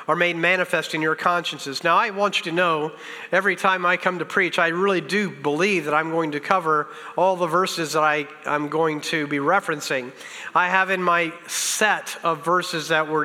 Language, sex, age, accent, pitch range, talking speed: English, male, 40-59, American, 155-195 Hz, 205 wpm